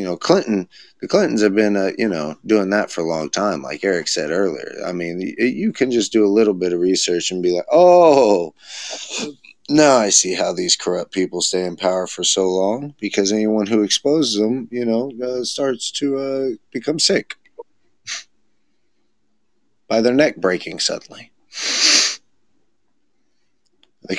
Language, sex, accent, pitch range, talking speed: English, male, American, 95-140 Hz, 165 wpm